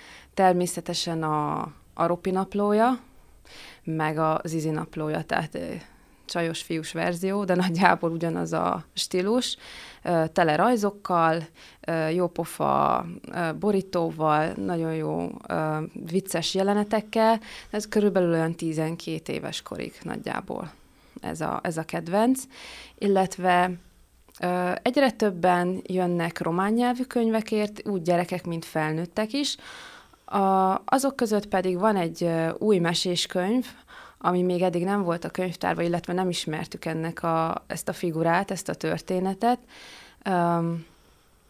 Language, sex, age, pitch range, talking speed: Hungarian, female, 20-39, 165-200 Hz, 120 wpm